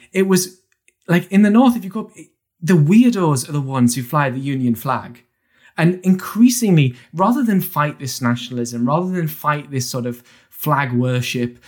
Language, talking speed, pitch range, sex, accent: English, 175 wpm, 130-195 Hz, male, British